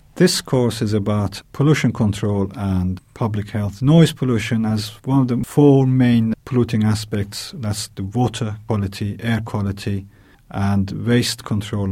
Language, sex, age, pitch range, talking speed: English, male, 50-69, 105-125 Hz, 140 wpm